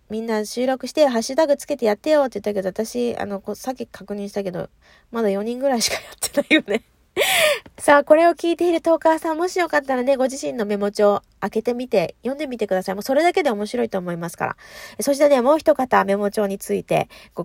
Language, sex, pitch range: Japanese, female, 215-330 Hz